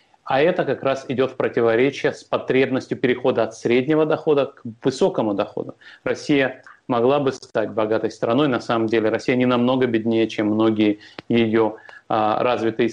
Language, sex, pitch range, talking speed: Russian, male, 115-130 Hz, 155 wpm